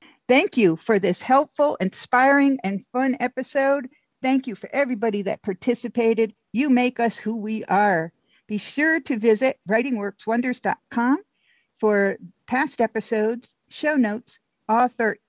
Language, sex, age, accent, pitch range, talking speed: English, female, 50-69, American, 200-250 Hz, 125 wpm